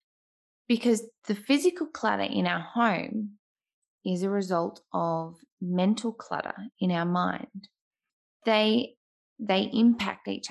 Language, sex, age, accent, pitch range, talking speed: English, female, 20-39, Australian, 185-235 Hz, 115 wpm